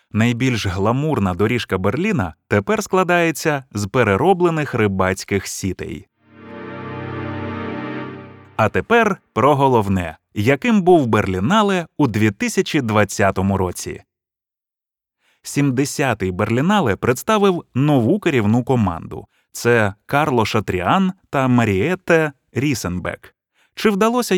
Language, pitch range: Ukrainian, 100-145 Hz